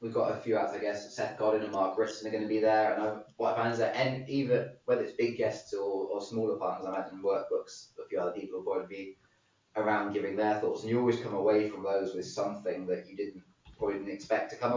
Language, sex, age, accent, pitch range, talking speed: English, male, 20-39, British, 100-145 Hz, 255 wpm